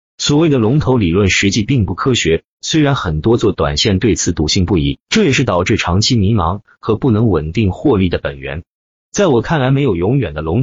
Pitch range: 85-120 Hz